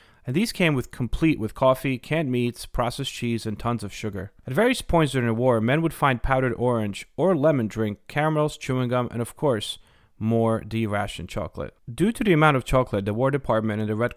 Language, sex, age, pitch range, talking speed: English, male, 30-49, 105-135 Hz, 210 wpm